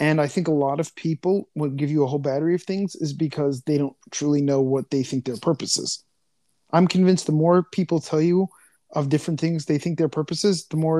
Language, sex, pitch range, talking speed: English, male, 140-170 Hz, 240 wpm